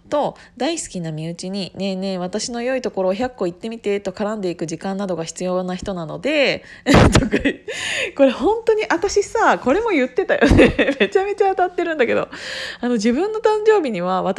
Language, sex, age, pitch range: Japanese, female, 20-39, 175-280 Hz